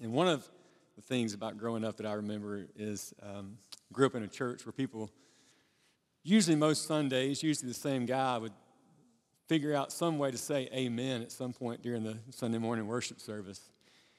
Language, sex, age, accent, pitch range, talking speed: English, male, 40-59, American, 110-140 Hz, 185 wpm